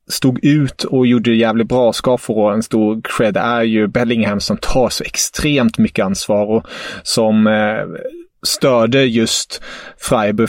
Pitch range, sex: 110-140 Hz, male